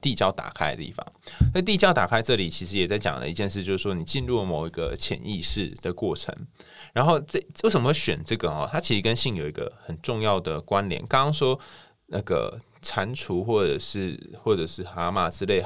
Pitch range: 95-130 Hz